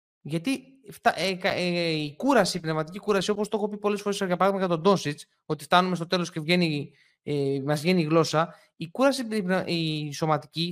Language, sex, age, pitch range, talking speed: Greek, male, 20-39, 150-210 Hz, 220 wpm